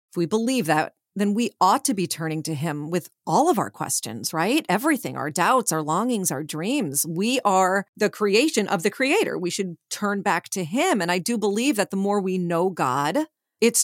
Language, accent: English, American